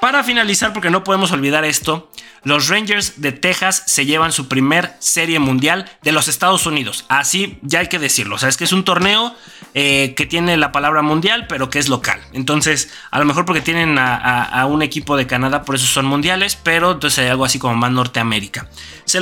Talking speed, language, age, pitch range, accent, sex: 215 wpm, Spanish, 30-49, 130-175 Hz, Mexican, male